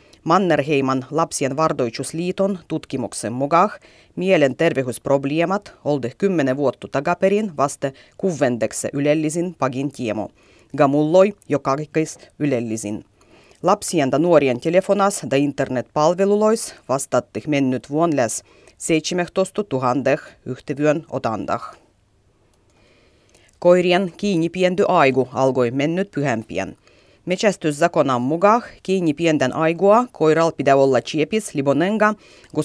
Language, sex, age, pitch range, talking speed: Finnish, female, 30-49, 135-175 Hz, 90 wpm